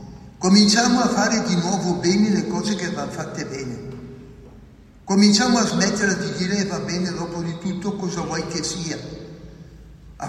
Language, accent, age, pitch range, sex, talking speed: Italian, native, 60-79, 145-185 Hz, male, 155 wpm